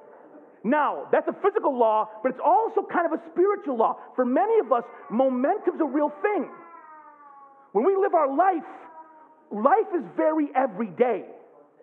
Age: 40-59